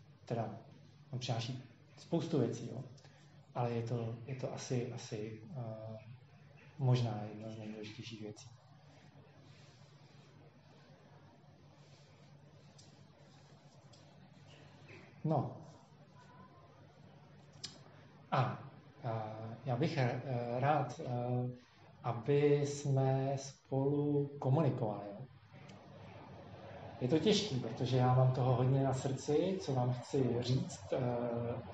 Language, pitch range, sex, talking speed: Czech, 125-150 Hz, male, 80 wpm